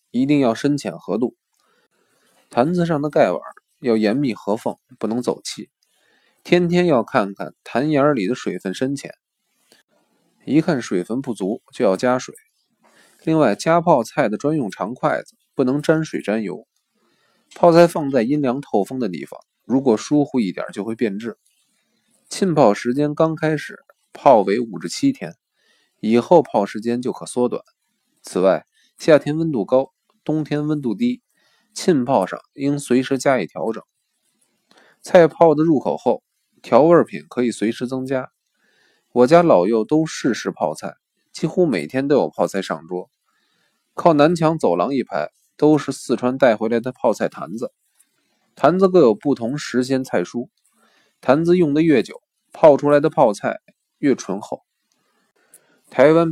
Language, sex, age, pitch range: Chinese, male, 20-39, 120-160 Hz